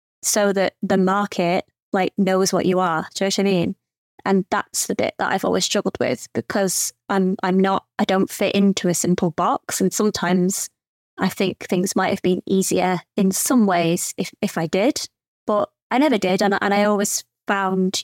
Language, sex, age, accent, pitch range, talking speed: English, female, 20-39, British, 185-210 Hz, 200 wpm